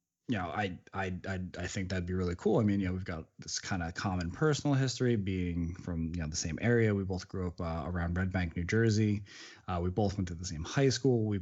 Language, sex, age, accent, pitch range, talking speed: English, male, 20-39, American, 90-115 Hz, 265 wpm